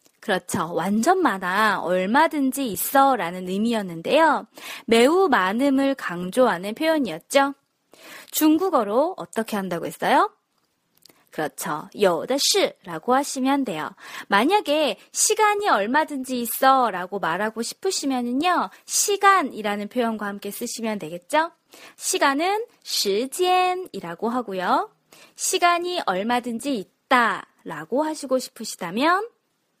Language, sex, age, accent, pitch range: Korean, female, 20-39, native, 215-325 Hz